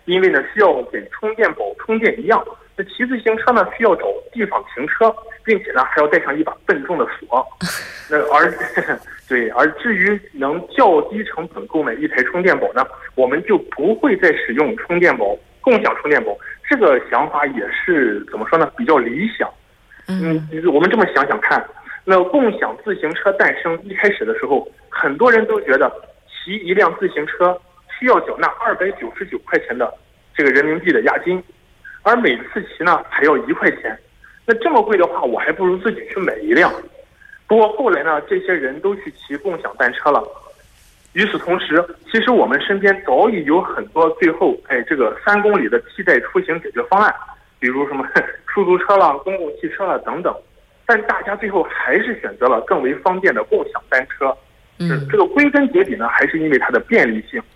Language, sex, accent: Korean, male, Chinese